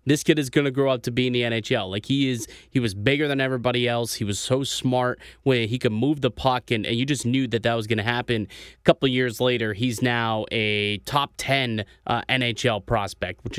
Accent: American